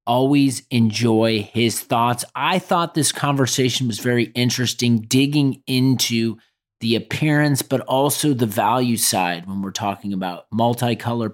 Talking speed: 130 wpm